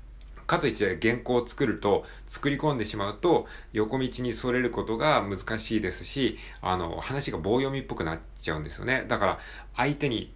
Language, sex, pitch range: Japanese, male, 85-125 Hz